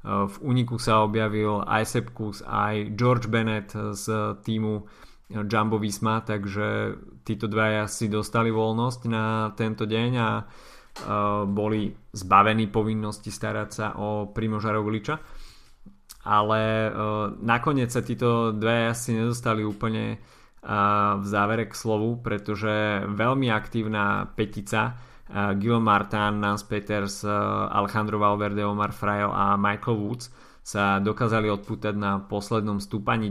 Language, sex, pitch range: Slovak, male, 105-115 Hz